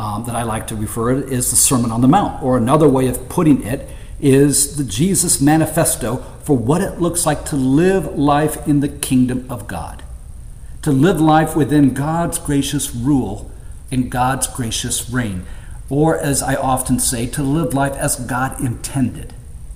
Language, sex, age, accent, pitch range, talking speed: English, male, 50-69, American, 120-145 Hz, 180 wpm